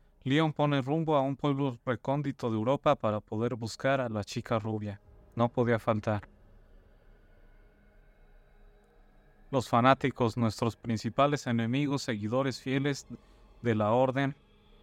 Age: 30-49